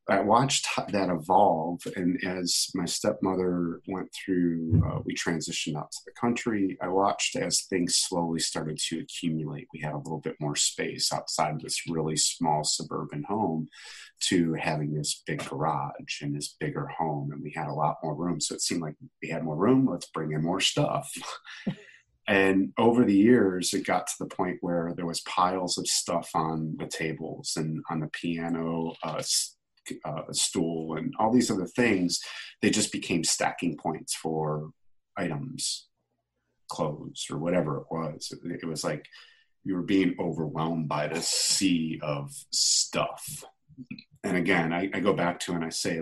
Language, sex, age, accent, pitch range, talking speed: English, male, 30-49, American, 80-90 Hz, 175 wpm